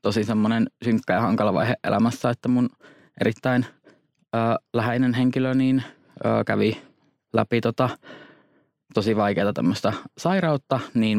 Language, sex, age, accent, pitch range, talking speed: Finnish, male, 20-39, native, 110-125 Hz, 125 wpm